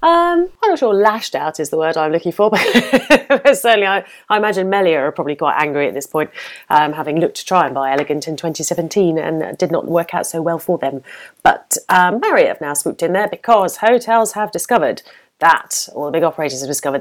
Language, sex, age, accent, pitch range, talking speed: English, female, 30-49, British, 145-195 Hz, 225 wpm